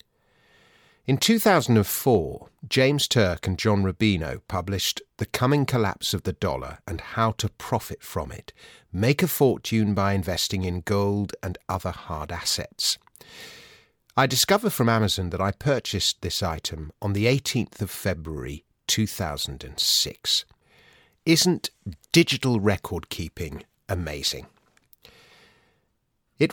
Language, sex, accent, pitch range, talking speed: English, male, British, 95-125 Hz, 125 wpm